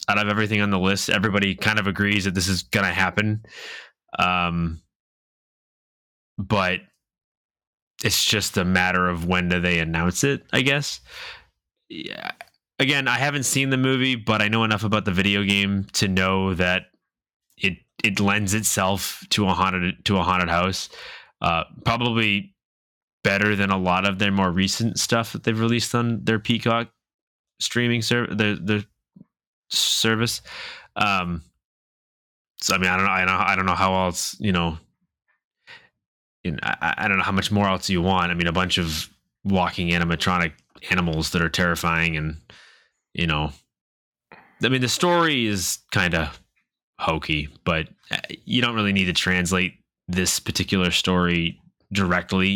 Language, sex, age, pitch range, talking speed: English, male, 20-39, 90-105 Hz, 160 wpm